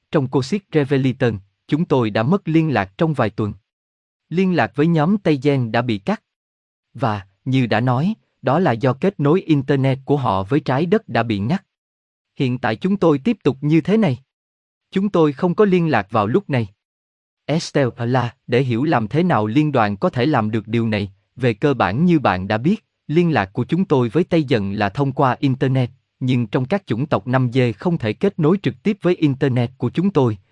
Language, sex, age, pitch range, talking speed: Vietnamese, male, 20-39, 110-160 Hz, 215 wpm